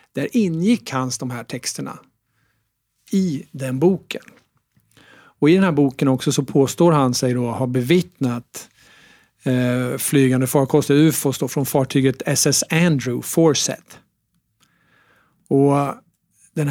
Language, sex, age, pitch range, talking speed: Swedish, male, 50-69, 130-155 Hz, 120 wpm